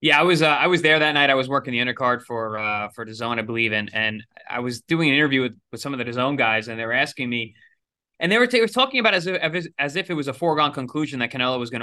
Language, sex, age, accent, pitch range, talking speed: English, male, 20-39, American, 130-165 Hz, 295 wpm